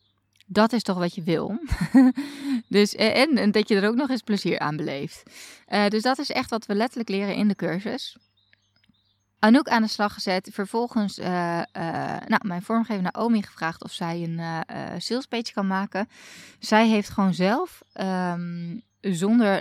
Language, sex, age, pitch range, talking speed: Dutch, female, 20-39, 170-220 Hz, 175 wpm